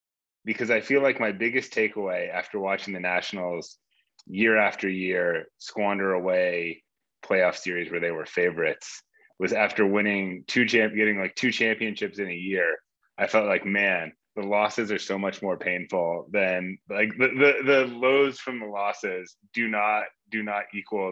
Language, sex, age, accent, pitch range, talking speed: English, male, 20-39, American, 95-120 Hz, 170 wpm